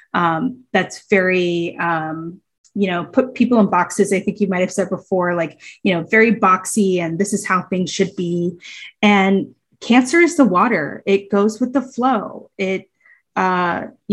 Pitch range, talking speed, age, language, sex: 185-230 Hz, 170 wpm, 20-39, English, female